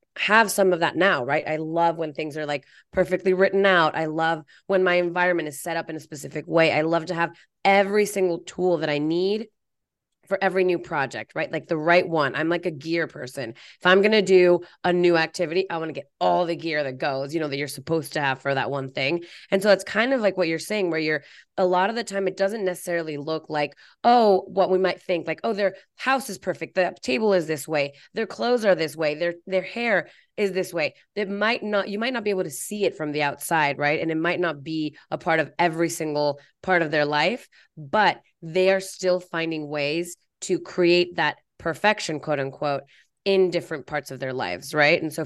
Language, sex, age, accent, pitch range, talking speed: English, female, 20-39, American, 155-185 Hz, 235 wpm